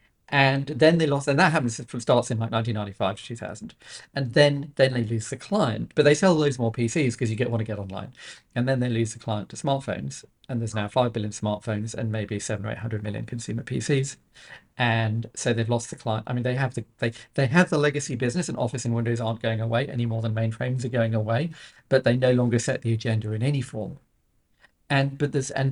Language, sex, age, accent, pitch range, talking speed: English, male, 40-59, British, 110-130 Hz, 235 wpm